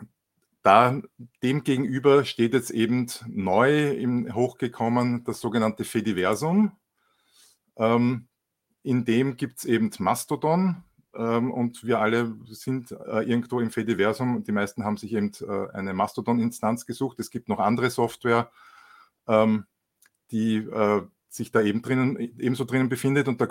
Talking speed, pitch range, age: 135 wpm, 110-125 Hz, 50-69